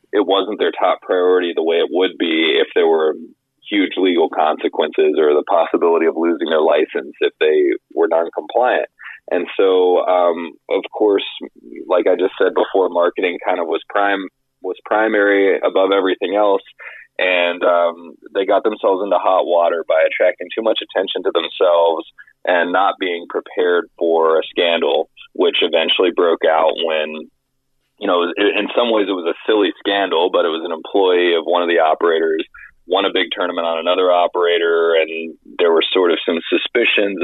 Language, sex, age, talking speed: English, male, 30-49, 175 wpm